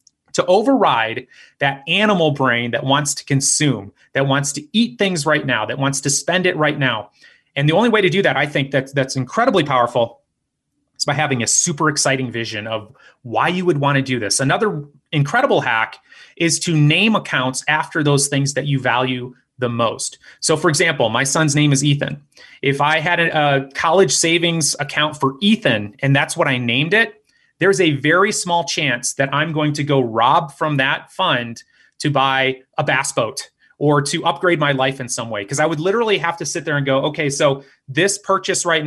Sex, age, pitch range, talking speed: male, 30-49, 135-170 Hz, 200 wpm